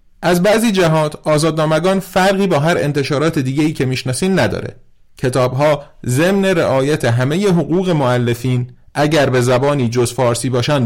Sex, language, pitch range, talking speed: male, Persian, 125-170 Hz, 135 wpm